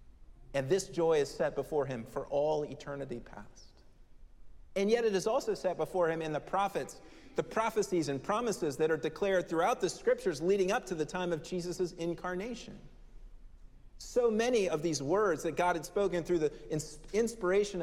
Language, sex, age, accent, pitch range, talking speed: English, male, 40-59, American, 140-190 Hz, 175 wpm